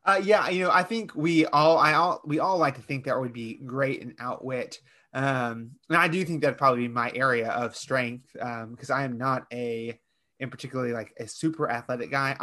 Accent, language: American, English